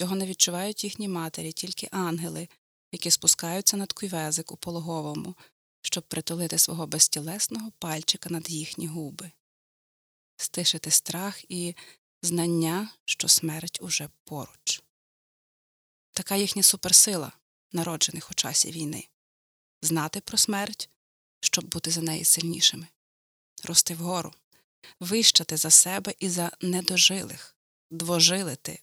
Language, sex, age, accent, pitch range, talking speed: Ukrainian, female, 30-49, native, 160-185 Hz, 110 wpm